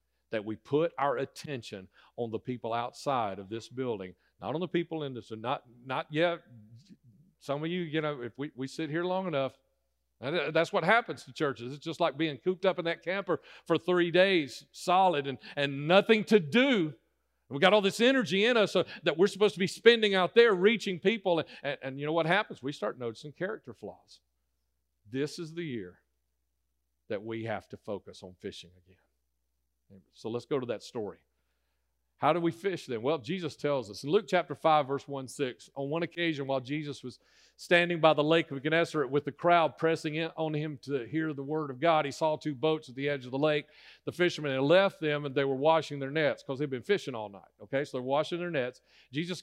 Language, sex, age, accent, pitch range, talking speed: English, male, 50-69, American, 120-165 Hz, 215 wpm